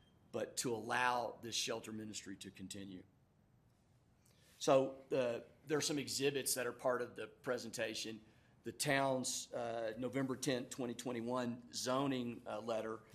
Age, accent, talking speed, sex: 50-69, American, 130 wpm, male